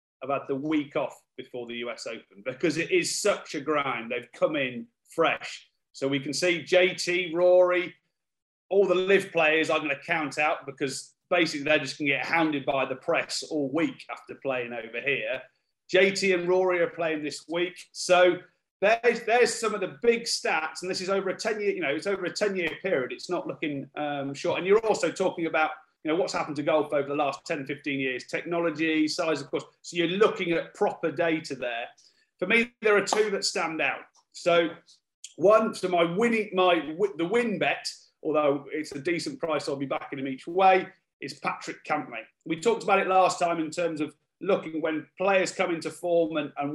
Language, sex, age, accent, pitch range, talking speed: English, male, 30-49, British, 150-185 Hz, 200 wpm